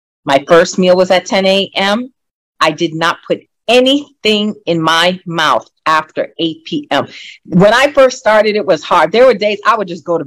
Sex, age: female, 40-59